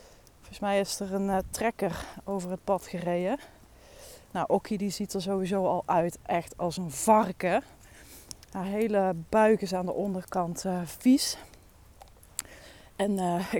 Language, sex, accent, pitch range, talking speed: Dutch, female, Dutch, 175-215 Hz, 150 wpm